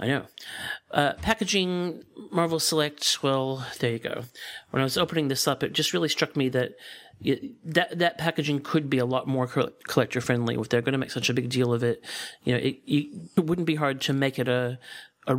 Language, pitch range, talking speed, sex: English, 130-155 Hz, 215 wpm, male